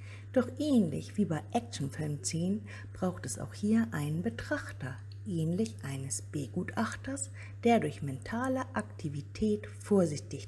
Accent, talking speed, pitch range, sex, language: German, 115 wpm, 100-165 Hz, female, German